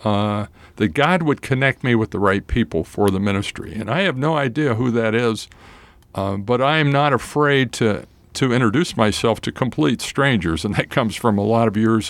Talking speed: 210 wpm